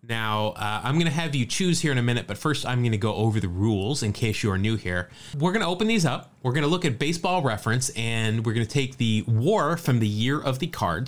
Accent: American